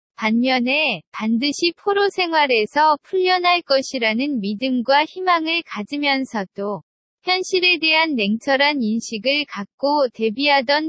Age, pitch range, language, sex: 20-39, 230-320 Hz, Korean, female